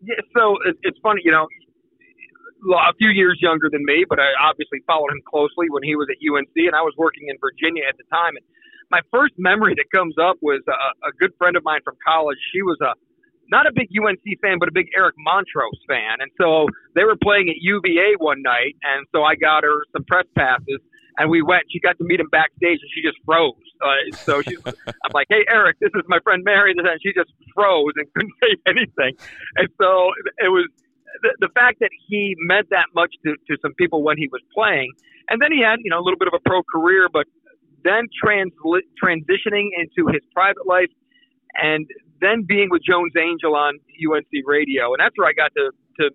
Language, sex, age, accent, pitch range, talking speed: English, male, 40-59, American, 150-215 Hz, 220 wpm